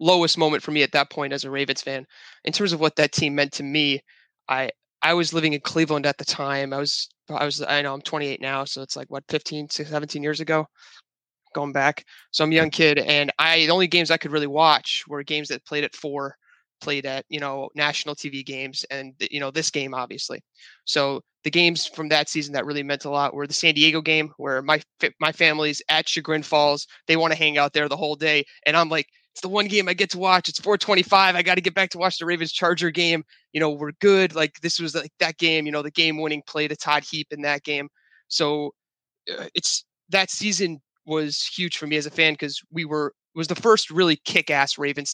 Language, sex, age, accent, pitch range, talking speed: English, male, 20-39, American, 145-165 Hz, 240 wpm